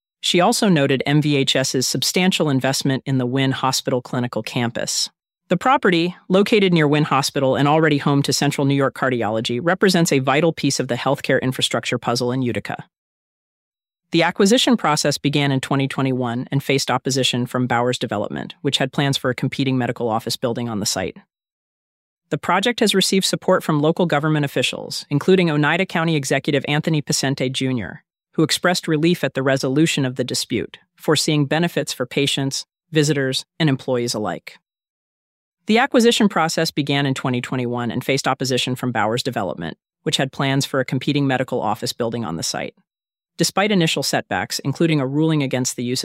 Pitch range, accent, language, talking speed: 130-165 Hz, American, English, 165 wpm